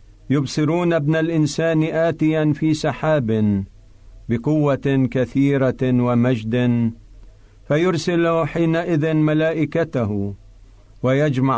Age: 50-69